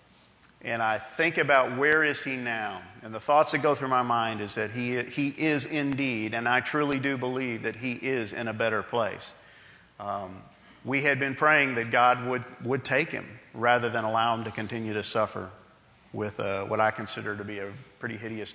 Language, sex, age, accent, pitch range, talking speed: English, male, 40-59, American, 110-130 Hz, 205 wpm